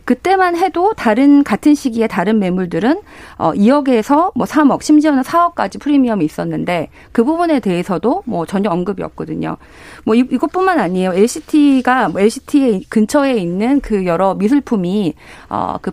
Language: Korean